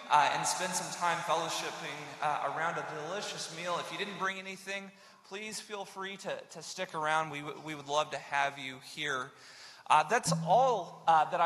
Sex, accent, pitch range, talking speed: male, American, 175-215 Hz, 195 wpm